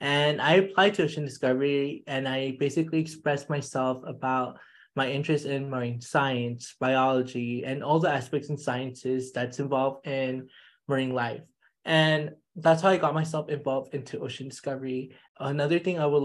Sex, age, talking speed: male, 20-39, 160 wpm